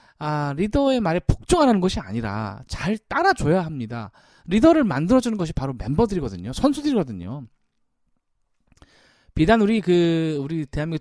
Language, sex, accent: Korean, male, native